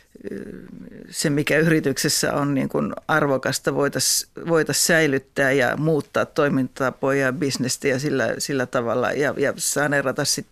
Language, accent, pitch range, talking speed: Finnish, native, 135-160 Hz, 125 wpm